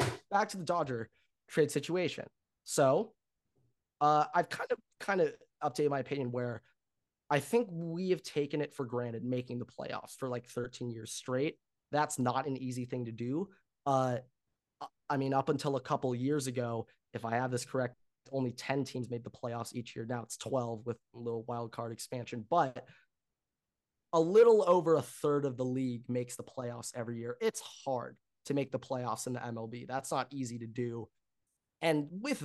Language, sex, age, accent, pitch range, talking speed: English, male, 20-39, American, 120-155 Hz, 185 wpm